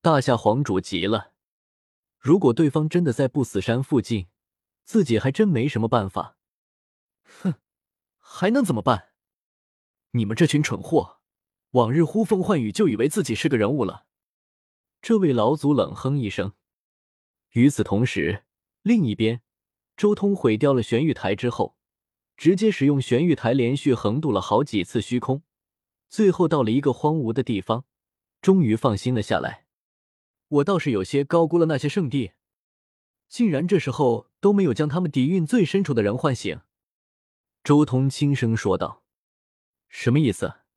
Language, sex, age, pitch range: Chinese, male, 20-39, 115-165 Hz